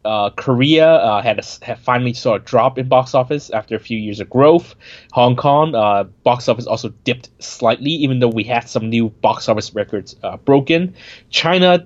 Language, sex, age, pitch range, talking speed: English, male, 20-39, 110-145 Hz, 195 wpm